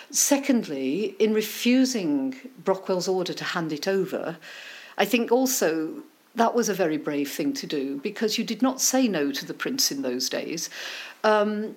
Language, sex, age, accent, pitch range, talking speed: English, female, 50-69, British, 200-250 Hz, 170 wpm